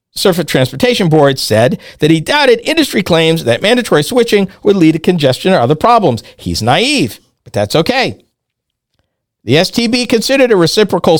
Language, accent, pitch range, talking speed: English, American, 140-225 Hz, 155 wpm